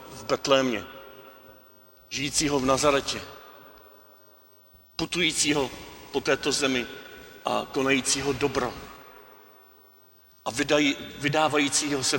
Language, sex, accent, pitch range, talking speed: Czech, male, native, 130-155 Hz, 75 wpm